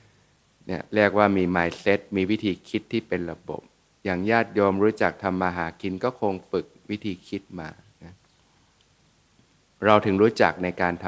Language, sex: Thai, male